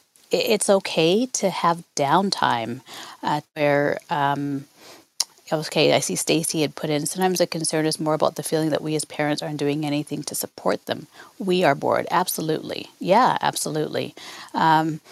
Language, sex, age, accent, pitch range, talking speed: English, female, 40-59, American, 150-175 Hz, 160 wpm